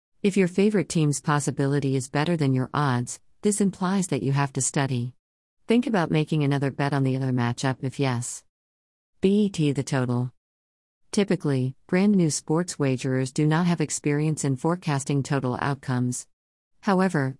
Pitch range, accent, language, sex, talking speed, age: 130-160 Hz, American, English, female, 155 wpm, 50-69